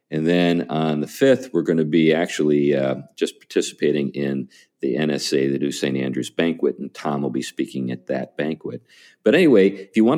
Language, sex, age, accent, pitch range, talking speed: English, male, 50-69, American, 75-100 Hz, 200 wpm